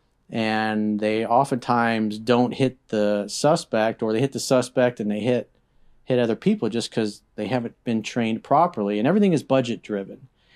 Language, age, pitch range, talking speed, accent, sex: English, 40-59, 115-135 Hz, 170 wpm, American, male